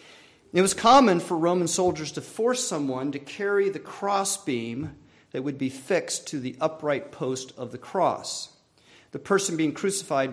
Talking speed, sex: 170 wpm, male